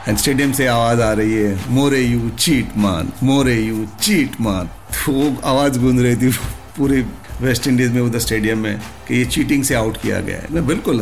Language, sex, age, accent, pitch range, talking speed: Hindi, male, 50-69, native, 105-125 Hz, 200 wpm